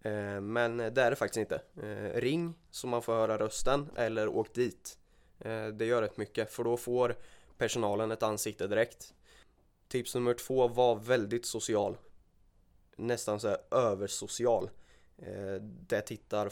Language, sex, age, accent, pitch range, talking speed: Swedish, male, 20-39, native, 105-130 Hz, 140 wpm